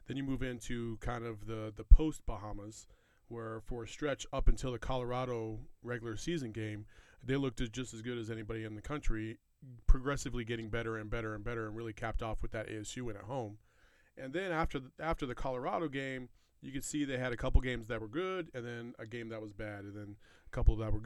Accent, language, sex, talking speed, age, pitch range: American, English, male, 225 wpm, 30-49, 110-130 Hz